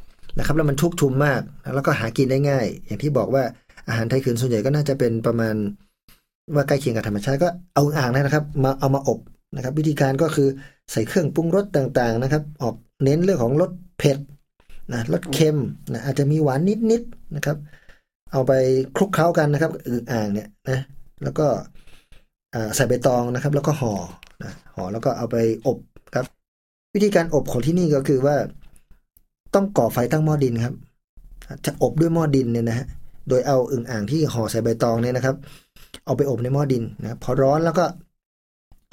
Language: Thai